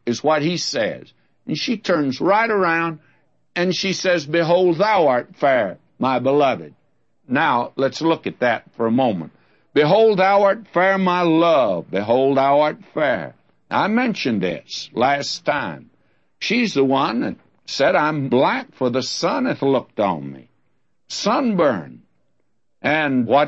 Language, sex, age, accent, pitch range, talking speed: English, male, 60-79, American, 135-195 Hz, 150 wpm